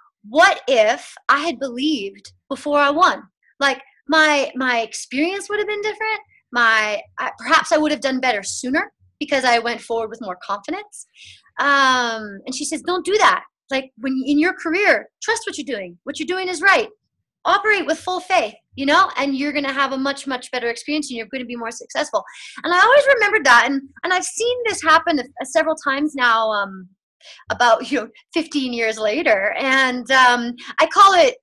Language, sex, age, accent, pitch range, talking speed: English, female, 30-49, American, 260-360 Hz, 190 wpm